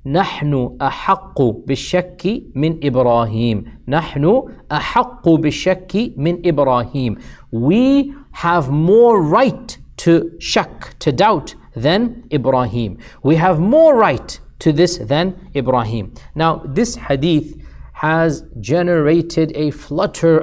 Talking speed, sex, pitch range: 100 wpm, male, 135-170 Hz